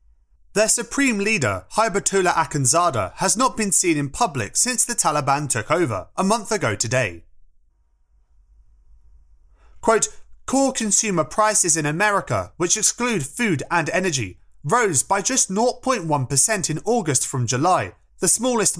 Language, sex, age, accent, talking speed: English, male, 30-49, British, 130 wpm